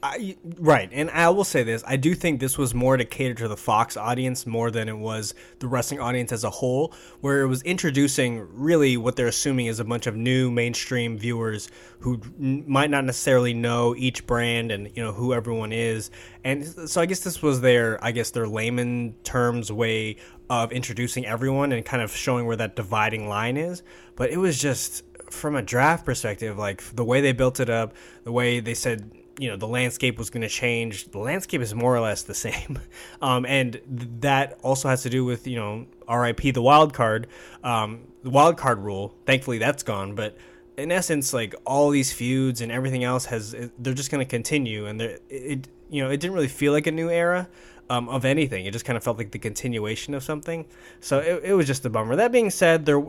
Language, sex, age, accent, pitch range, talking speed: English, male, 20-39, American, 115-140 Hz, 220 wpm